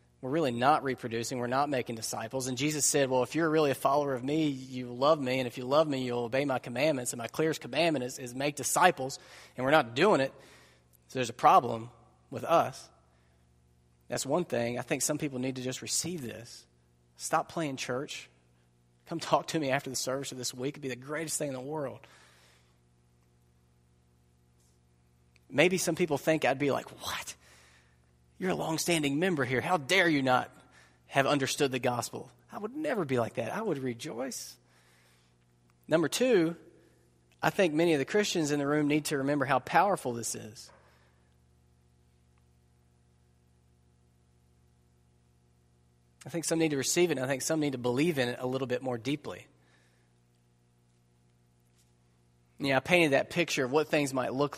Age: 30-49